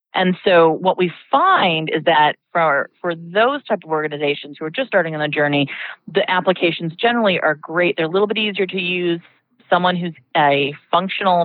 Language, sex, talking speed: English, female, 190 wpm